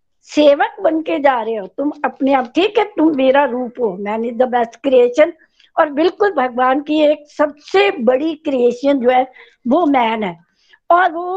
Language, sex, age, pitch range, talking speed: Hindi, female, 60-79, 255-325 Hz, 185 wpm